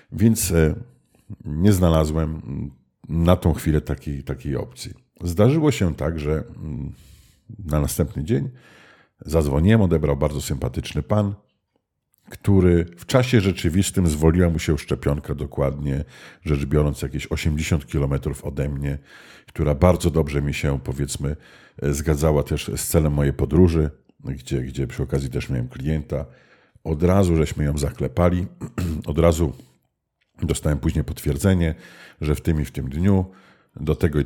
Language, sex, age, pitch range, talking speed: Polish, male, 50-69, 70-85 Hz, 135 wpm